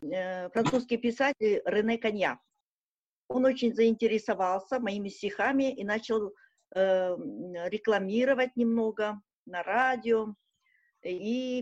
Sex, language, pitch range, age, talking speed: female, Russian, 195-255 Hz, 40-59, 85 wpm